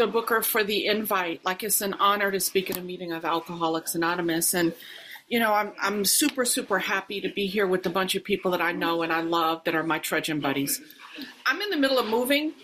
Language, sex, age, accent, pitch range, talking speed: English, female, 40-59, American, 185-260 Hz, 235 wpm